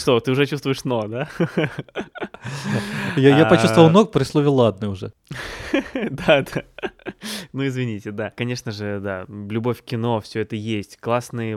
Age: 20-39